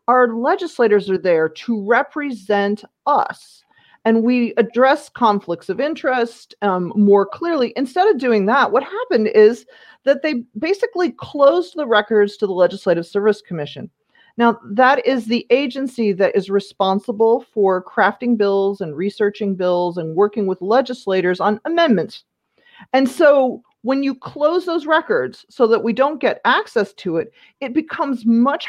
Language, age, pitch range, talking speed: English, 40-59, 200-275 Hz, 150 wpm